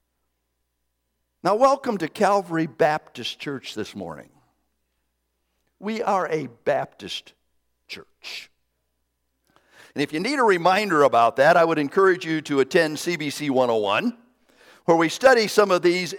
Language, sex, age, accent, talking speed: English, male, 50-69, American, 130 wpm